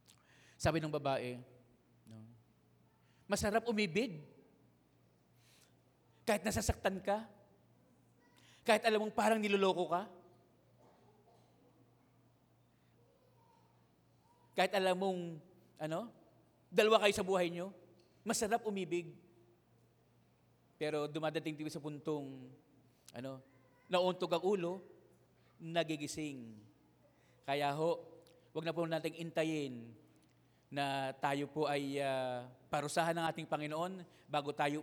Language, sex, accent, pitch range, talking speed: English, male, Filipino, 145-200 Hz, 95 wpm